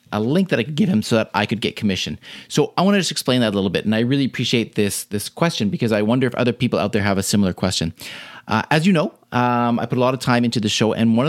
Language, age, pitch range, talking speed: English, 30-49, 110-140 Hz, 310 wpm